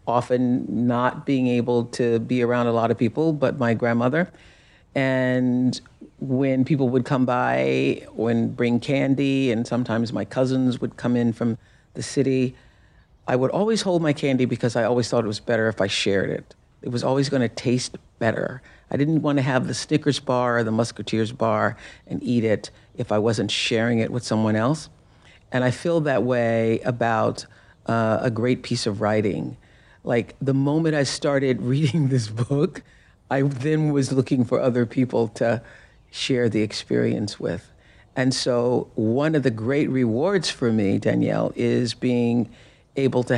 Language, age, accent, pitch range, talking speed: English, 50-69, American, 115-135 Hz, 175 wpm